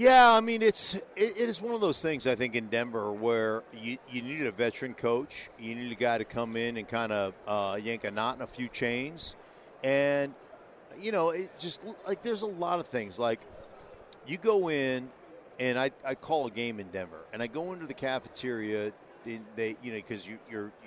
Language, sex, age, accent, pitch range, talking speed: English, male, 50-69, American, 115-165 Hz, 215 wpm